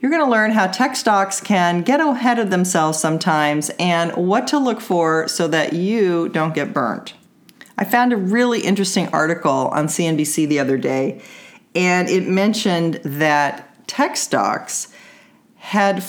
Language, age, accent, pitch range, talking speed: English, 40-59, American, 155-230 Hz, 155 wpm